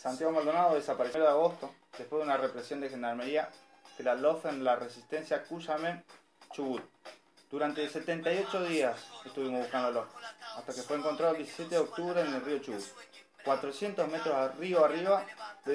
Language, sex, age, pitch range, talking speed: Spanish, male, 20-39, 130-175 Hz, 180 wpm